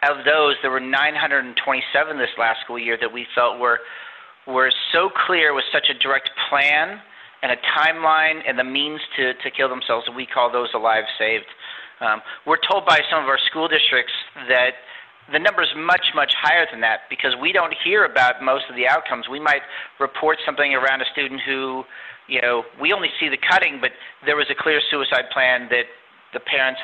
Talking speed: 205 wpm